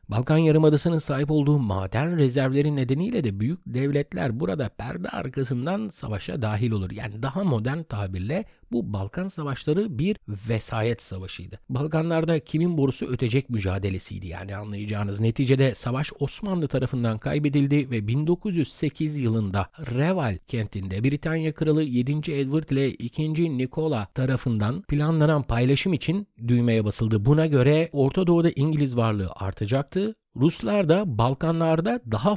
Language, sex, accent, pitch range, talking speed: Turkish, male, native, 115-160 Hz, 125 wpm